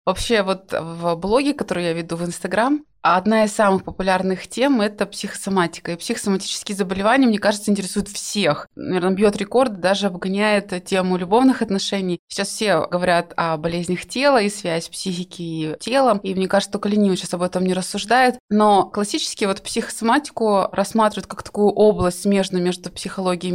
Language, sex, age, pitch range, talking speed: Russian, female, 20-39, 185-215 Hz, 165 wpm